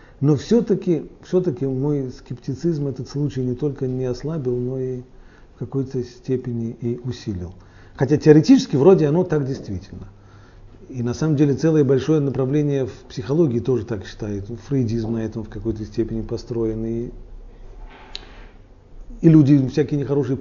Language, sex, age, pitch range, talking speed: Russian, male, 40-59, 115-150 Hz, 140 wpm